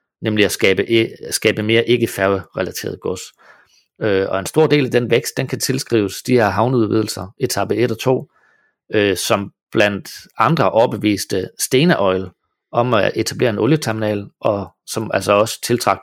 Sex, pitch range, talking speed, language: male, 95-125 Hz, 165 wpm, Danish